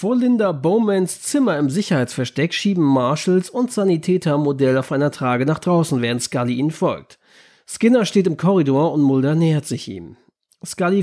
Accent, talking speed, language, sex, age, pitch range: German, 165 wpm, German, male, 40-59, 140-185 Hz